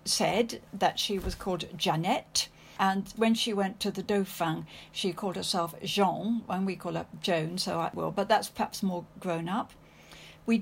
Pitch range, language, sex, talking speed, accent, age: 180-235 Hz, English, female, 180 wpm, British, 60-79